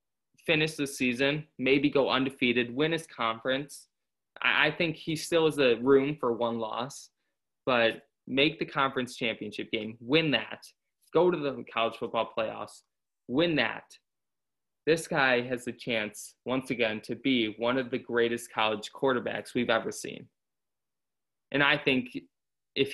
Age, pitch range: 20-39, 115-135 Hz